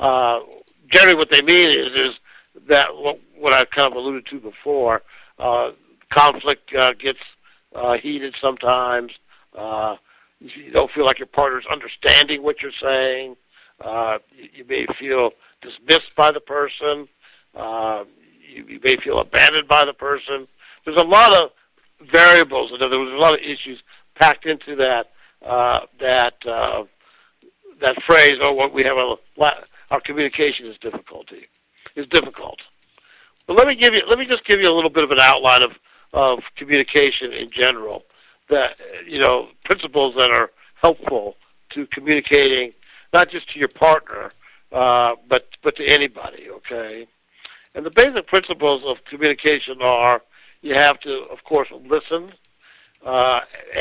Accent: American